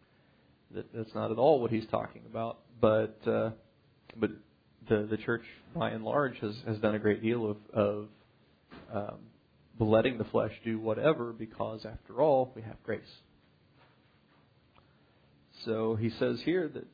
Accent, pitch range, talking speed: American, 105-115 Hz, 150 wpm